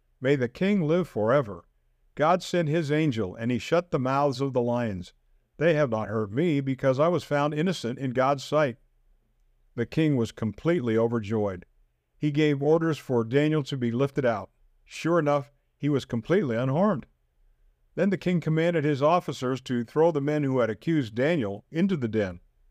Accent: American